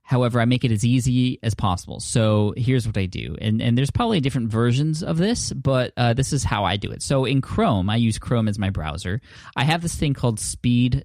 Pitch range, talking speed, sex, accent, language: 100-120 Hz, 240 wpm, male, American, English